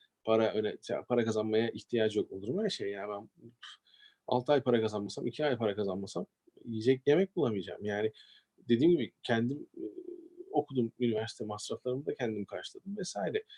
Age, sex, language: 40-59, male, Turkish